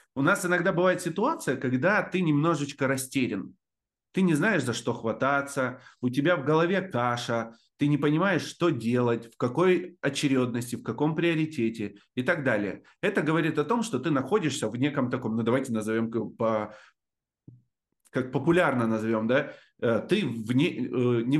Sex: male